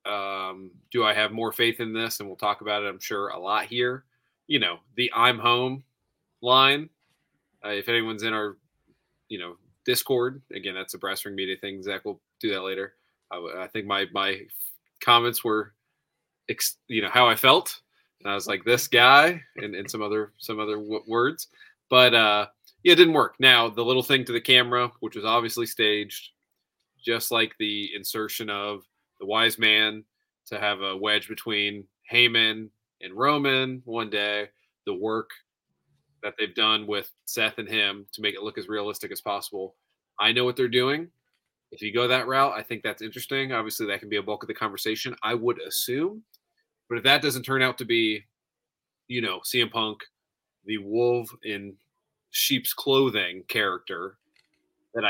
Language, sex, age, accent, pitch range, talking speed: English, male, 20-39, American, 105-125 Hz, 185 wpm